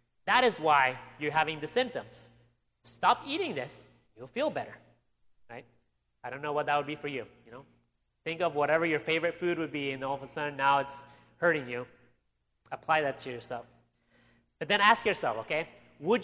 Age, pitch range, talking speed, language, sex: 30-49, 130-220 Hz, 190 wpm, English, male